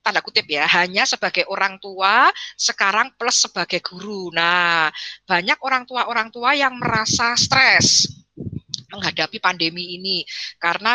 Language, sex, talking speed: Indonesian, female, 125 wpm